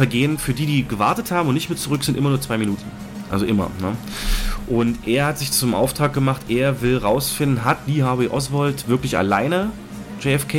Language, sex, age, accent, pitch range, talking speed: German, male, 30-49, German, 105-140 Hz, 195 wpm